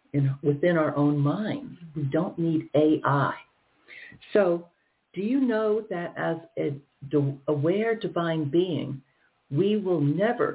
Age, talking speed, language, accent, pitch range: 60-79, 120 wpm, English, American, 140-180 Hz